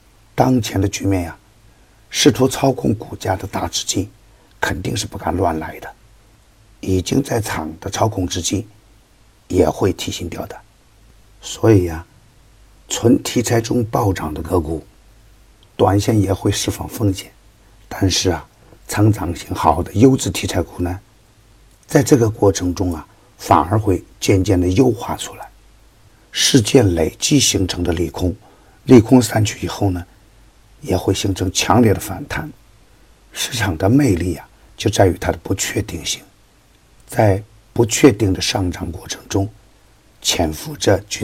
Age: 50-69